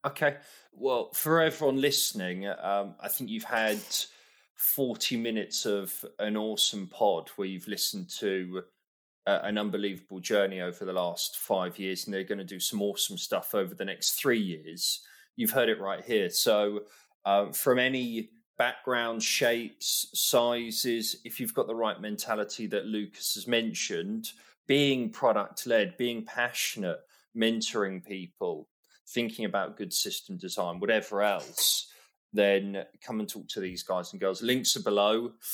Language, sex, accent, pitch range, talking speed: English, male, British, 100-120 Hz, 150 wpm